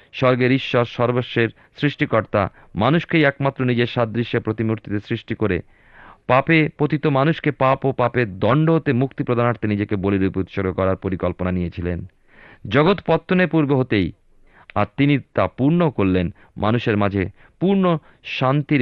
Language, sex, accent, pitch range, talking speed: Bengali, male, native, 95-135 Hz, 95 wpm